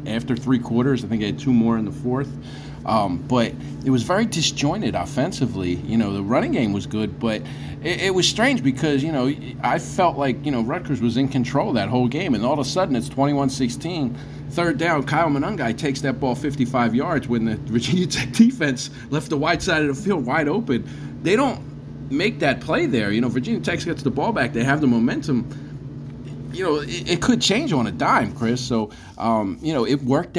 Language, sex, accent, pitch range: English, male, American, 100-135 Hz